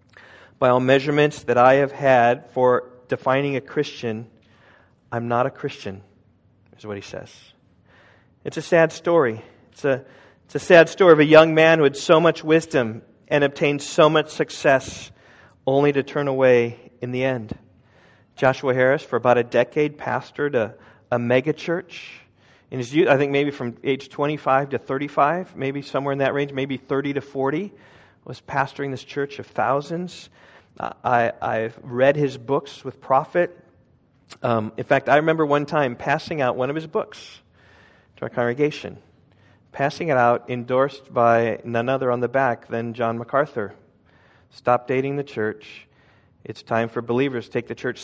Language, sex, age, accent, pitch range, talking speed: English, male, 40-59, American, 115-145 Hz, 165 wpm